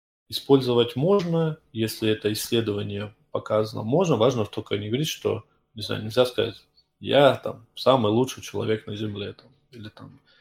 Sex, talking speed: male, 150 wpm